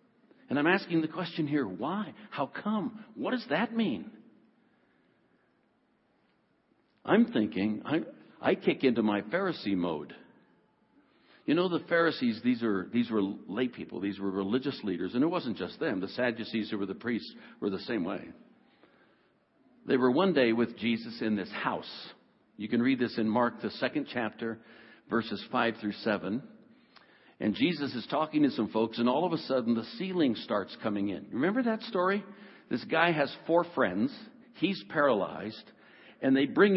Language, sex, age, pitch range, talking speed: English, male, 60-79, 115-185 Hz, 165 wpm